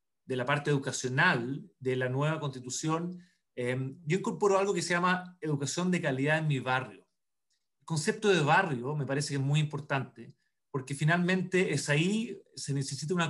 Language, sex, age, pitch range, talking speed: Spanish, male, 30-49, 135-175 Hz, 170 wpm